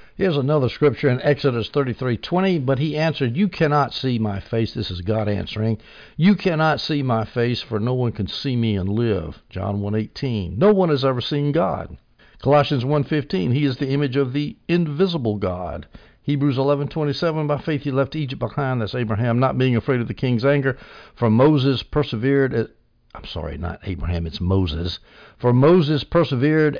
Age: 60-79